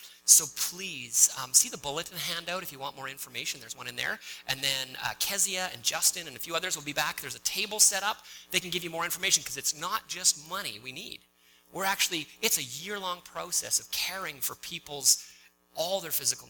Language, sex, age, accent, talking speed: English, male, 30-49, American, 220 wpm